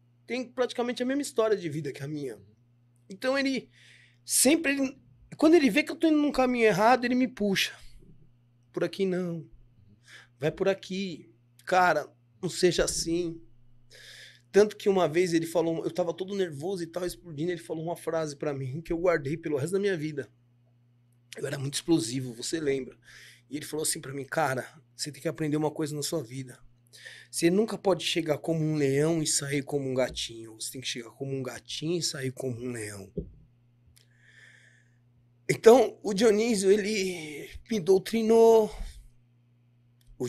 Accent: Brazilian